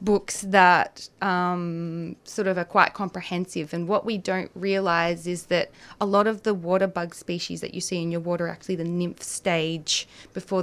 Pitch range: 165-190 Hz